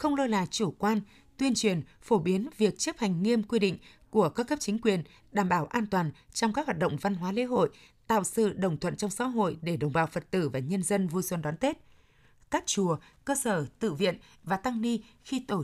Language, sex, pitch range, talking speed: Vietnamese, female, 185-235 Hz, 240 wpm